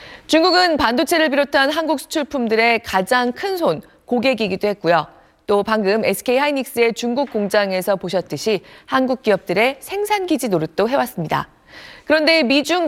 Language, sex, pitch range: Korean, female, 200-290 Hz